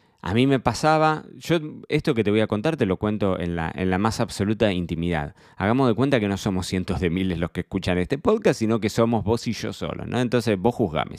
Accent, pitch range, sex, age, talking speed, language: Argentinian, 90-115 Hz, male, 20-39, 245 wpm, Spanish